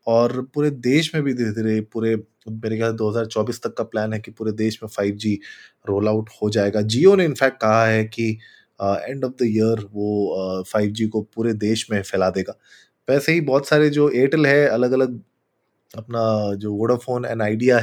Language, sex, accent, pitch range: Hindi, male, native, 105-130 Hz